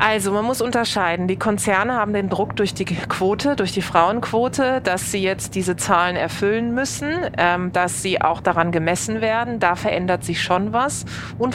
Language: German